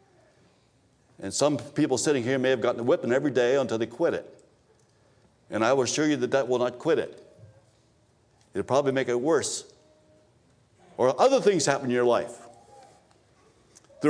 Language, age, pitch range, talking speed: English, 60-79, 135-215 Hz, 175 wpm